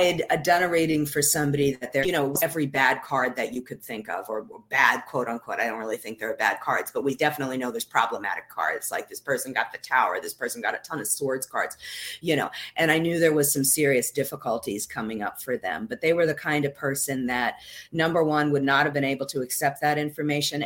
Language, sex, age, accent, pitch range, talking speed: English, female, 40-59, American, 135-155 Hz, 245 wpm